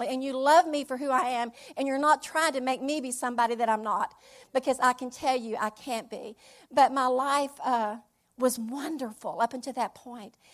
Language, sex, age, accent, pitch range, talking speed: English, female, 50-69, American, 240-295 Hz, 215 wpm